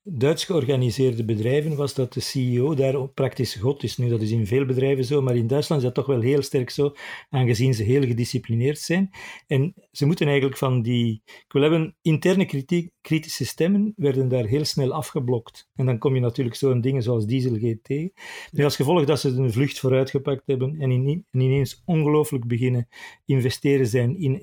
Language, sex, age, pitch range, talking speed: Dutch, male, 50-69, 125-150 Hz, 190 wpm